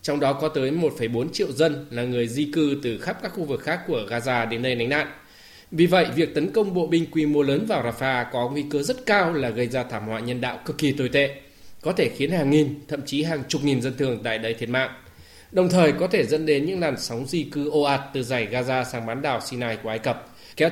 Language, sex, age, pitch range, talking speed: Vietnamese, male, 20-39, 125-155 Hz, 265 wpm